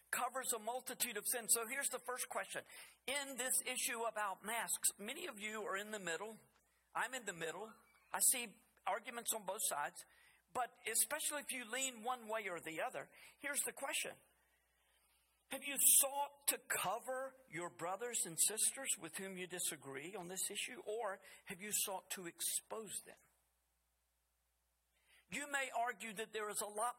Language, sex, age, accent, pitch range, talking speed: English, male, 50-69, American, 190-260 Hz, 170 wpm